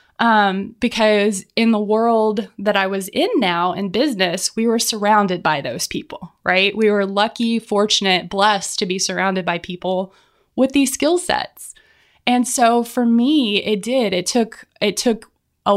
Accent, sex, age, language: American, female, 20-39, English